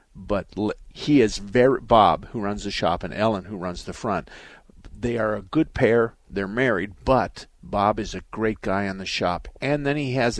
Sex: male